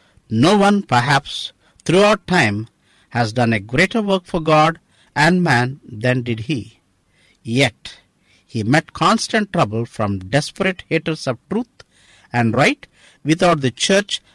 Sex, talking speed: male, 135 wpm